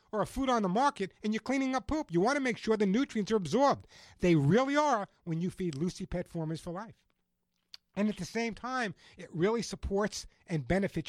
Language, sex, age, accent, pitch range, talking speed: English, male, 60-79, American, 175-245 Hz, 215 wpm